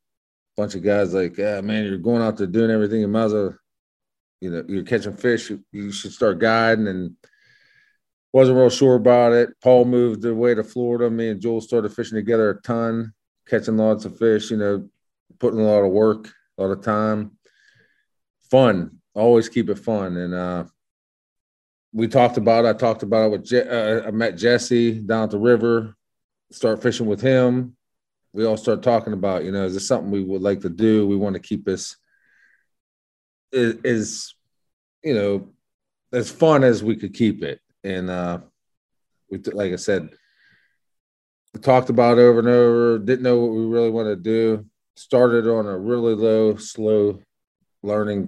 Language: English